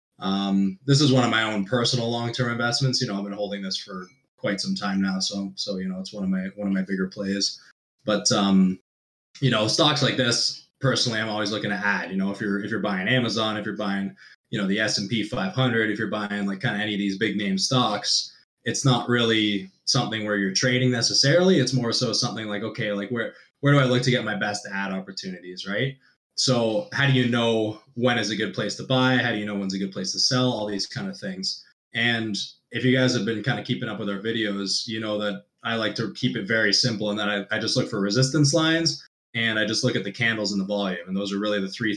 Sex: male